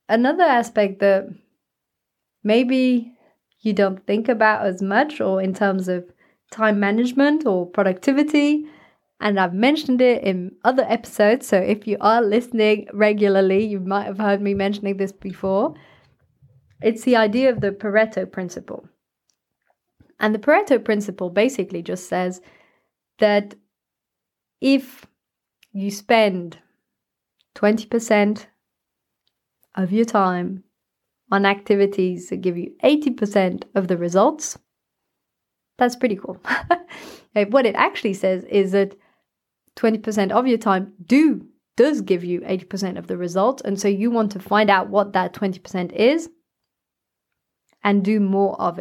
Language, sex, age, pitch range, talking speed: English, female, 30-49, 190-230 Hz, 130 wpm